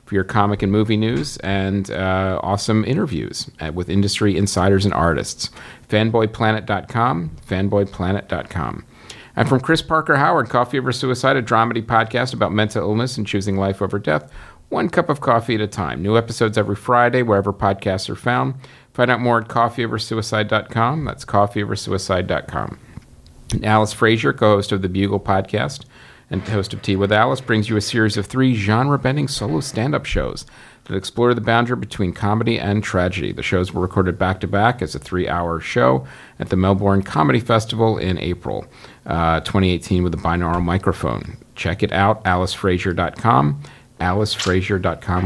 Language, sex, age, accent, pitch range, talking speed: English, male, 50-69, American, 95-115 Hz, 155 wpm